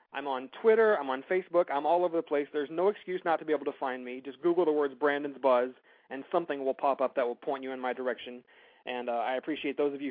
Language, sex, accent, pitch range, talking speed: English, male, American, 135-165 Hz, 275 wpm